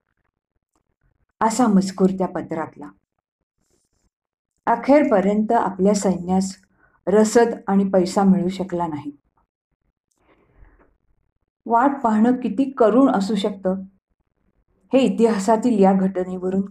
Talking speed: 85 wpm